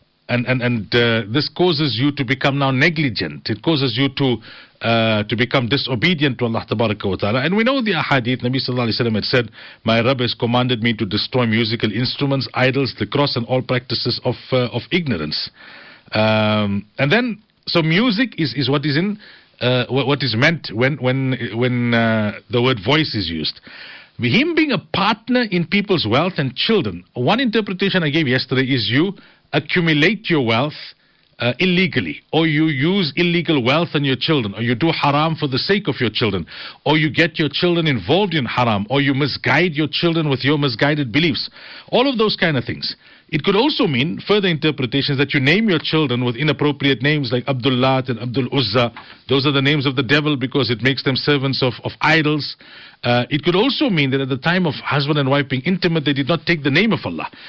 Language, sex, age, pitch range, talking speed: English, male, 50-69, 125-160 Hz, 200 wpm